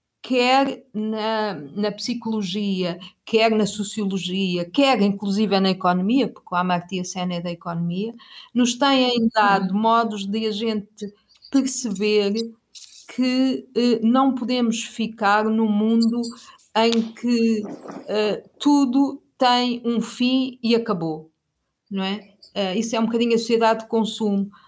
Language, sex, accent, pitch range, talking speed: Portuguese, female, Brazilian, 195-230 Hz, 130 wpm